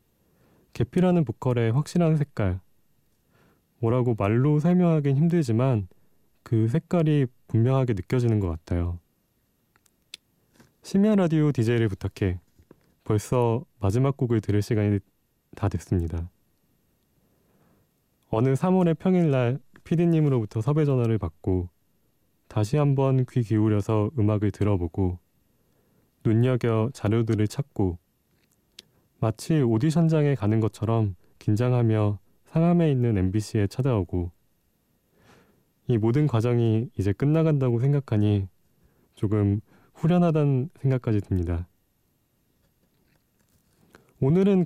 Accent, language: native, Korean